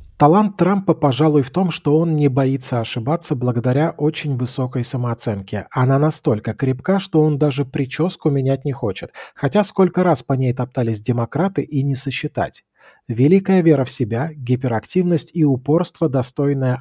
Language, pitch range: Russian, 125-155 Hz